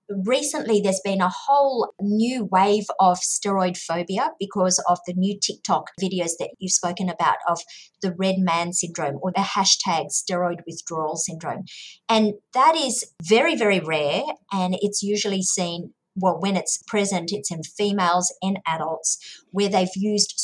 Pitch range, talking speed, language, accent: 175-215 Hz, 155 wpm, English, Australian